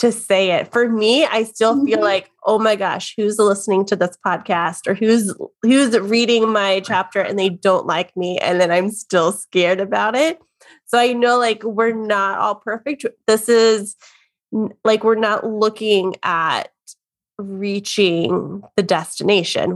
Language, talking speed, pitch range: English, 160 wpm, 190-225 Hz